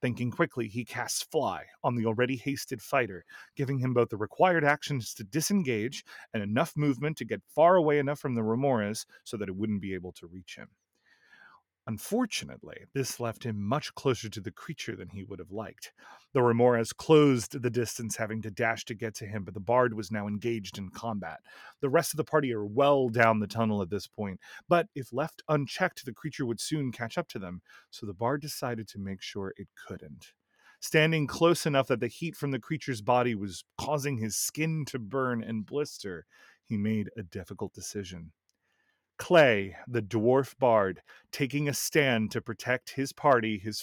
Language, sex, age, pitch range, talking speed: English, male, 30-49, 105-140 Hz, 195 wpm